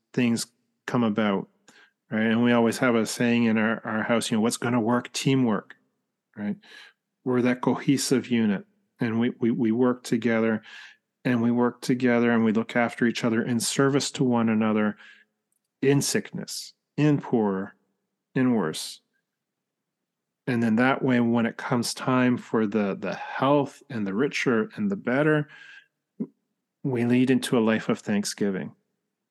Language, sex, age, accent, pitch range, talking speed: English, male, 40-59, American, 115-140 Hz, 160 wpm